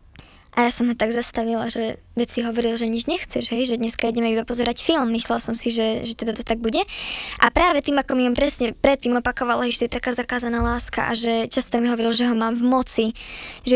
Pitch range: 235-260 Hz